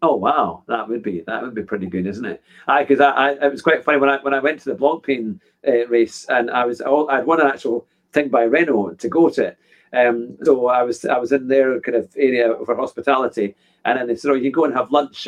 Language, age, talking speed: English, 40-59, 265 wpm